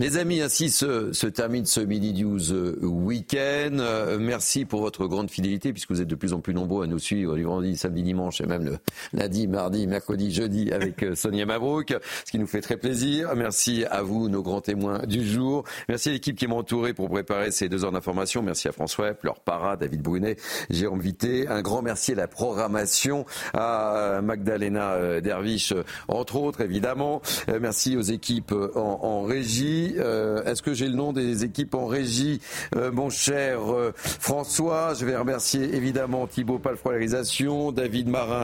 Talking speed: 180 wpm